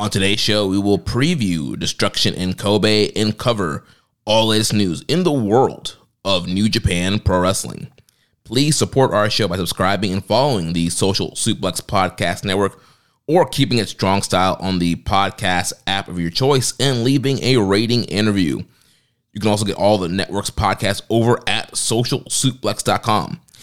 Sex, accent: male, American